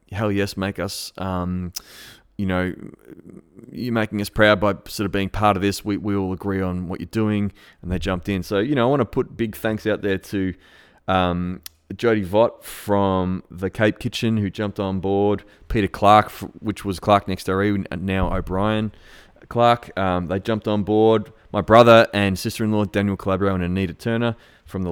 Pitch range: 95-110 Hz